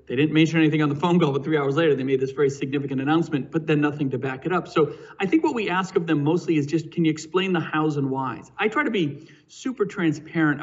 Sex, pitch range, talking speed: male, 135-165 Hz, 275 wpm